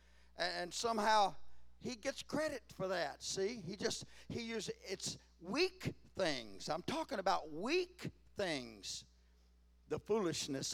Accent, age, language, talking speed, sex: American, 60-79, English, 125 wpm, male